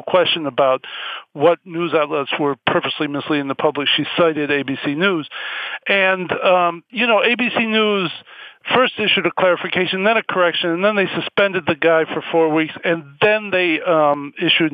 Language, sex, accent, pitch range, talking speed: English, male, American, 150-185 Hz, 165 wpm